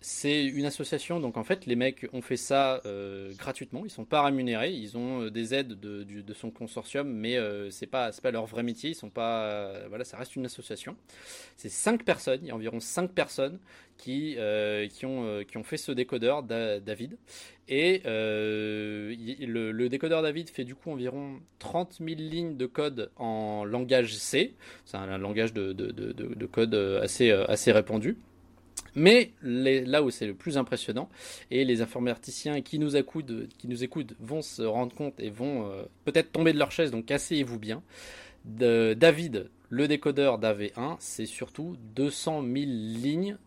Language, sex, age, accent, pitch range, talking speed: French, male, 20-39, French, 110-145 Hz, 185 wpm